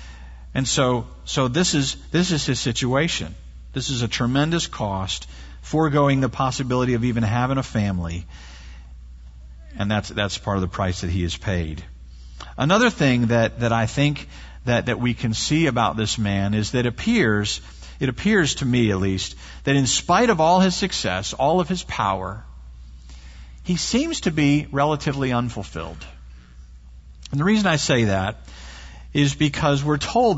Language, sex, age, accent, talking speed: English, male, 50-69, American, 165 wpm